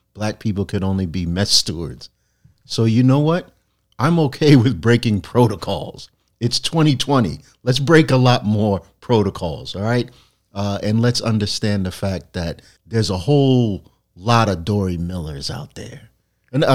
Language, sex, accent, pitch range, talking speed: English, male, American, 90-110 Hz, 155 wpm